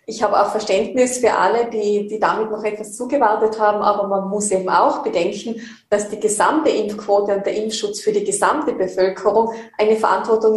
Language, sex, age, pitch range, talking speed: German, female, 20-39, 205-230 Hz, 180 wpm